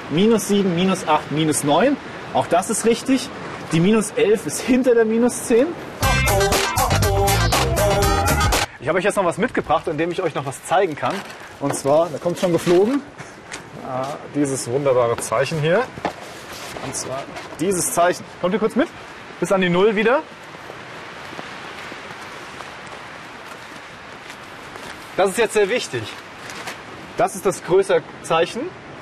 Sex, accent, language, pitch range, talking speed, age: male, German, German, 150-215 Hz, 135 wpm, 30-49